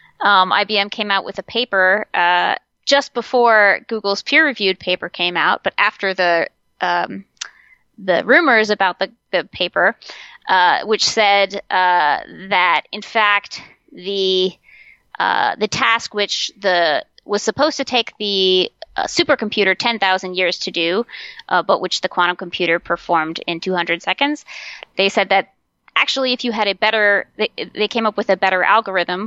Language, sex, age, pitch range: English, female, 20-39, 185-220 Hz